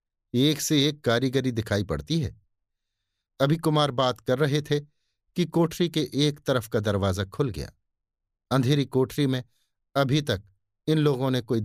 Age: 50-69